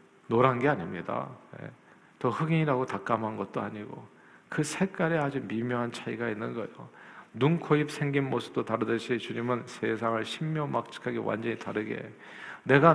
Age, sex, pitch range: 40-59, male, 115-155 Hz